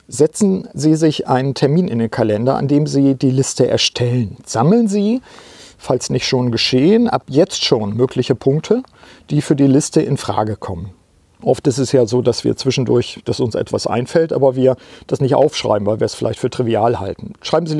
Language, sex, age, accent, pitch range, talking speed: German, male, 50-69, German, 125-160 Hz, 195 wpm